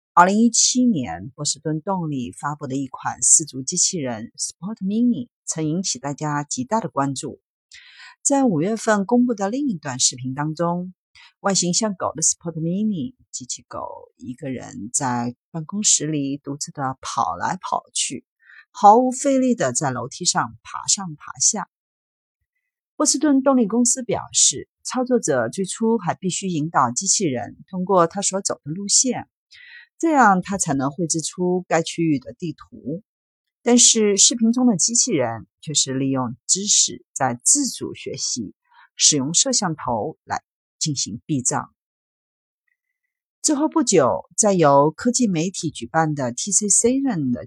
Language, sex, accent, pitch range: Chinese, female, native, 150-240 Hz